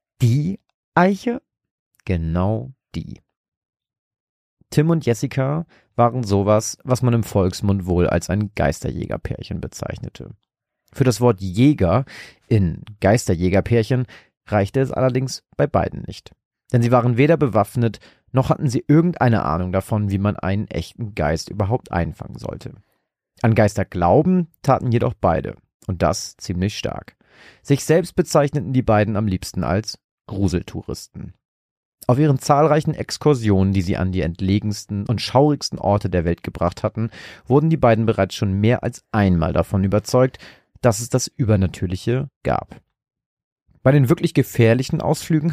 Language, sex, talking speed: German, male, 135 wpm